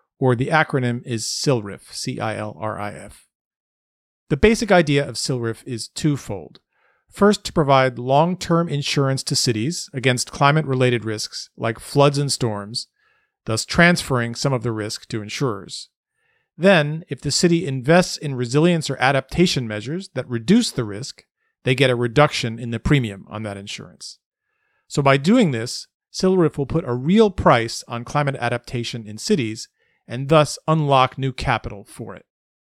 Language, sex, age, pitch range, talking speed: English, male, 40-59, 120-160 Hz, 160 wpm